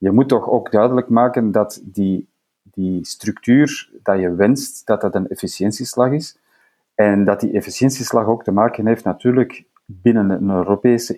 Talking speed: 160 wpm